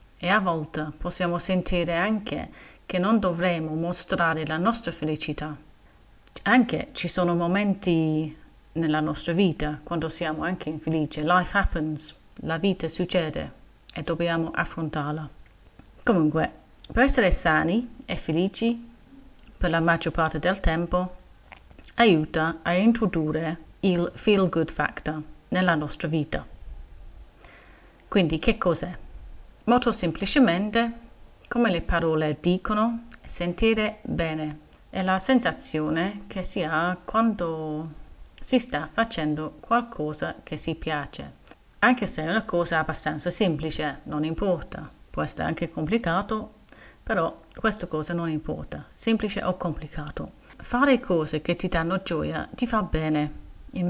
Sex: female